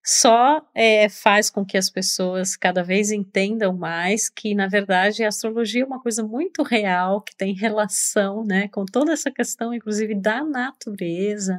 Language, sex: Portuguese, female